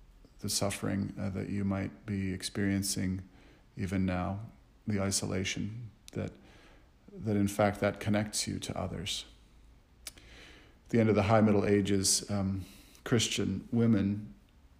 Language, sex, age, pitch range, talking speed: English, male, 40-59, 95-105 Hz, 130 wpm